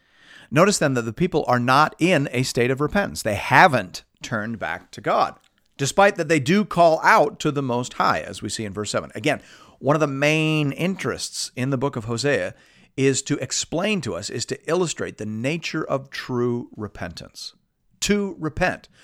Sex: male